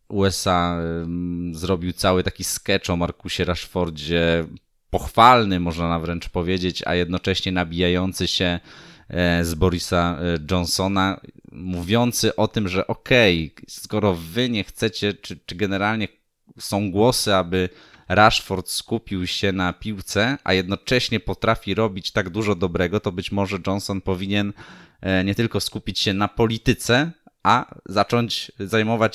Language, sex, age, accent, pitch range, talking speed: Polish, male, 20-39, native, 90-110 Hz, 125 wpm